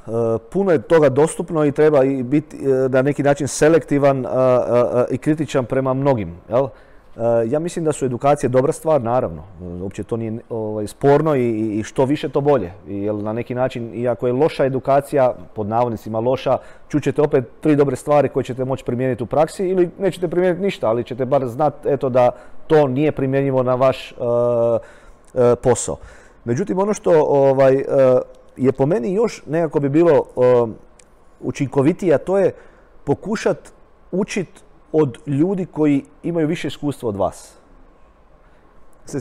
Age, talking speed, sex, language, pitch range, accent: 30-49, 145 wpm, male, Croatian, 125-150 Hz, native